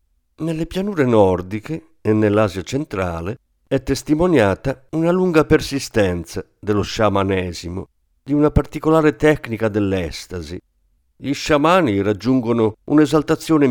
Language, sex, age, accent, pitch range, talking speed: Italian, male, 50-69, native, 95-150 Hz, 95 wpm